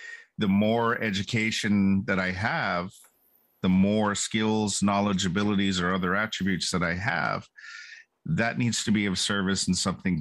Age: 50-69